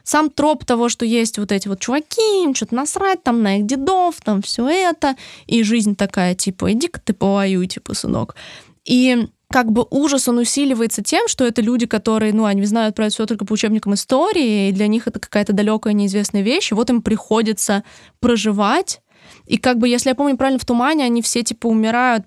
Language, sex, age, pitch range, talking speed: Russian, female, 20-39, 205-250 Hz, 200 wpm